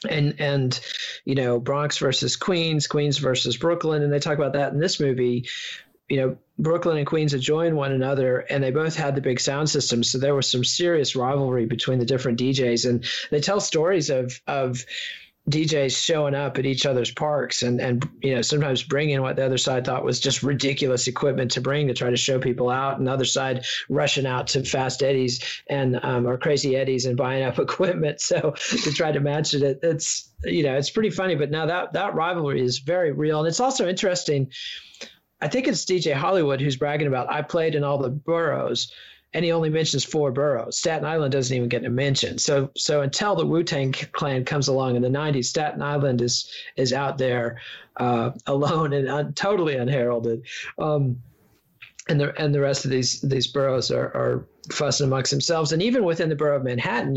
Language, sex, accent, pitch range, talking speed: English, male, American, 130-150 Hz, 205 wpm